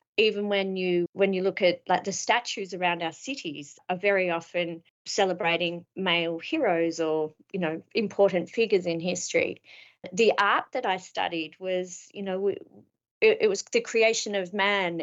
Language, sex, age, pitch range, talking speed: English, female, 30-49, 175-205 Hz, 160 wpm